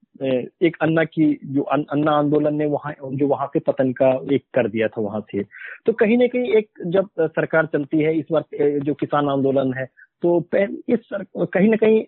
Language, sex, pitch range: Hindi, male, 135-175 Hz